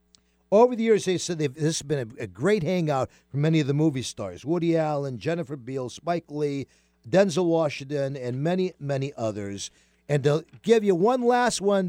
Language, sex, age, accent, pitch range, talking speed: English, male, 50-69, American, 125-175 Hz, 195 wpm